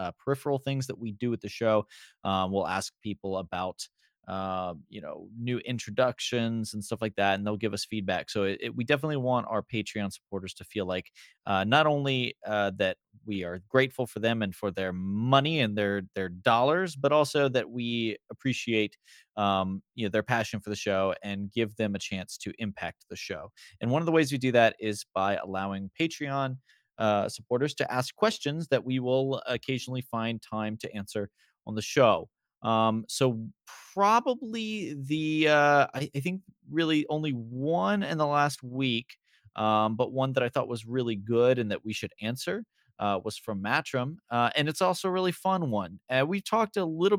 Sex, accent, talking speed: male, American, 195 wpm